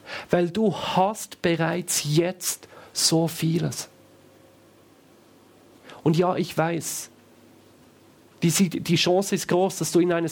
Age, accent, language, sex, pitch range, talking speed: 40-59, German, German, male, 115-180 Hz, 115 wpm